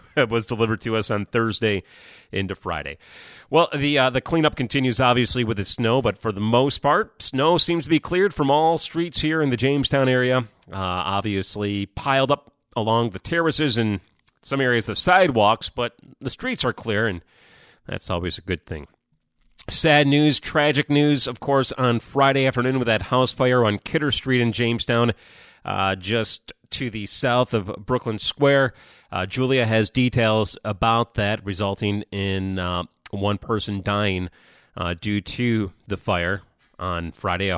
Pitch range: 100-125 Hz